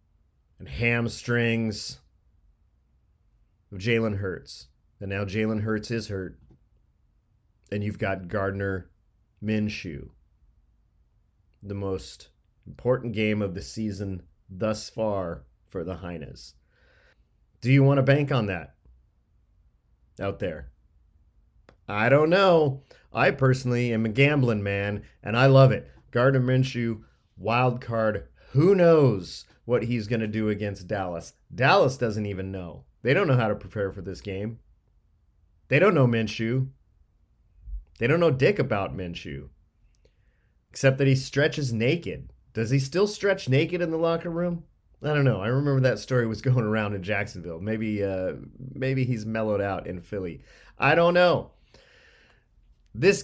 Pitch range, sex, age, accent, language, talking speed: 95-130 Hz, male, 40-59, American, English, 140 wpm